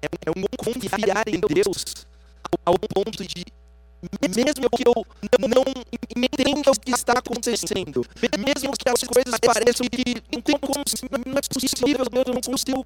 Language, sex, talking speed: Portuguese, male, 160 wpm